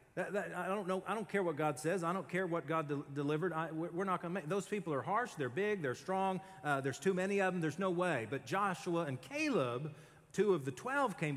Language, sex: English, male